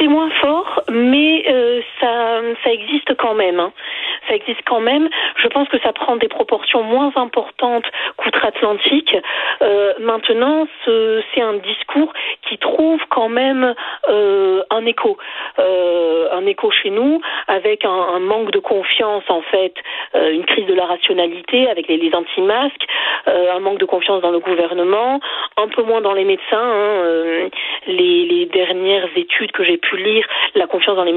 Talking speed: 165 wpm